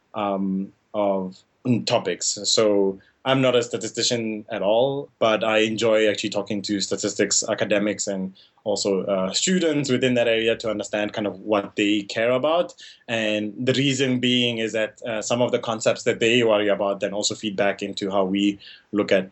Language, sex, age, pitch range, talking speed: English, male, 20-39, 100-120 Hz, 175 wpm